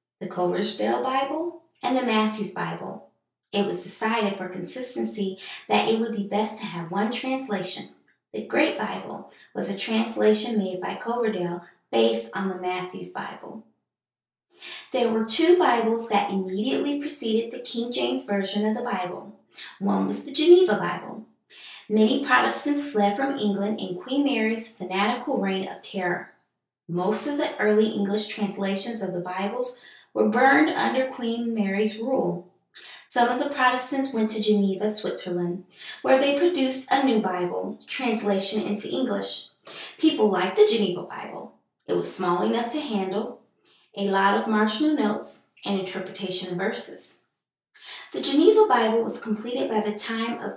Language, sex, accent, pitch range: English, female, American, 195-250 Hz